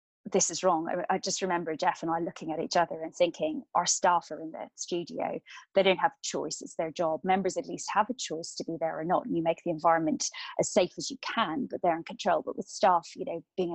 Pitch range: 170-215 Hz